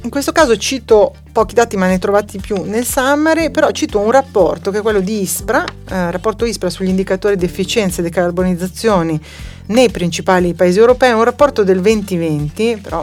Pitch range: 175-225 Hz